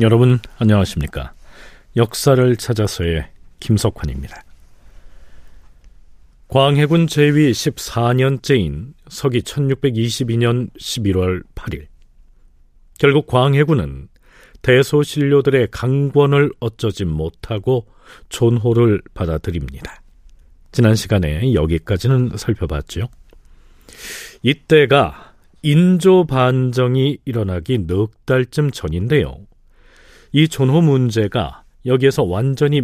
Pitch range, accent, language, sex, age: 85-135 Hz, native, Korean, male, 40-59